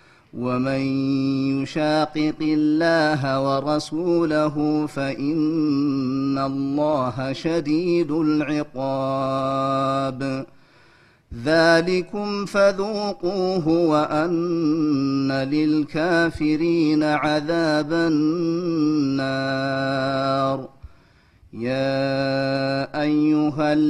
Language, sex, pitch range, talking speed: Amharic, male, 135-160 Hz, 40 wpm